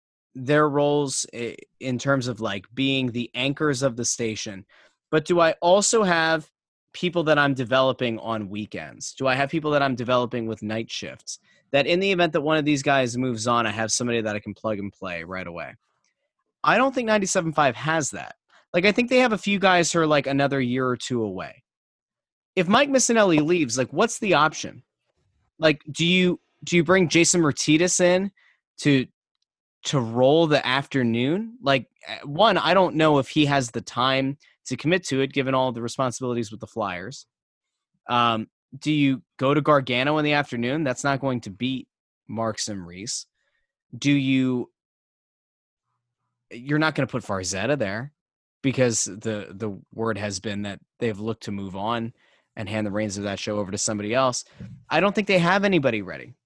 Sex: male